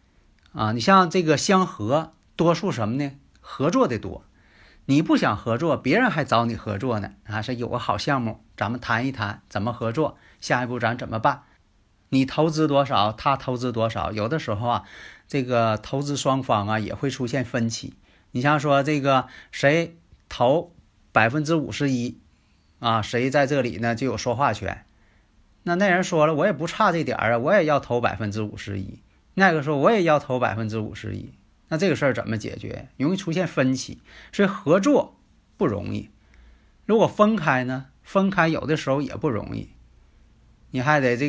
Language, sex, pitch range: Chinese, male, 110-145 Hz